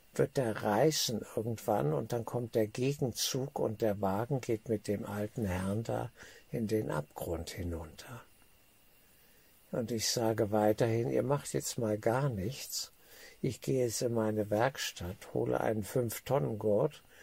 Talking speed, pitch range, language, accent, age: 145 wpm, 100-120 Hz, German, German, 60-79